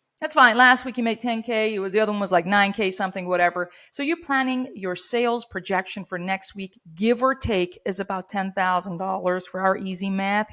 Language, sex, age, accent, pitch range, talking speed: English, female, 40-59, American, 190-245 Hz, 215 wpm